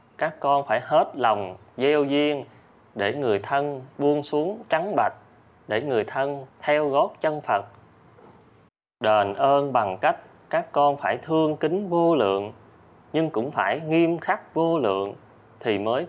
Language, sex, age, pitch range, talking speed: Vietnamese, male, 20-39, 110-150 Hz, 155 wpm